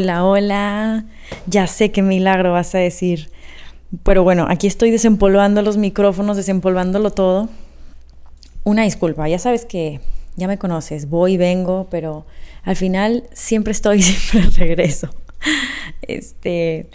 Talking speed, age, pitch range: 125 wpm, 20-39, 165-200 Hz